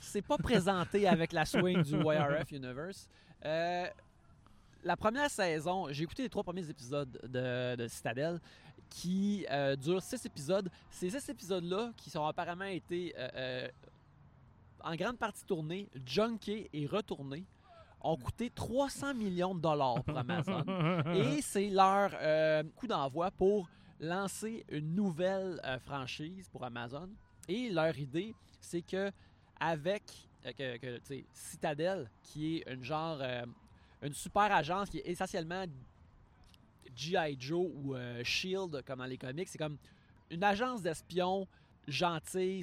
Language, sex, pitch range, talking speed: French, male, 140-185 Hz, 140 wpm